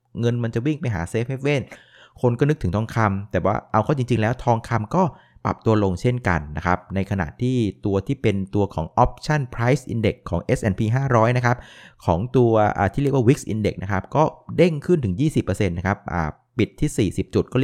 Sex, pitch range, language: male, 95-125 Hz, Thai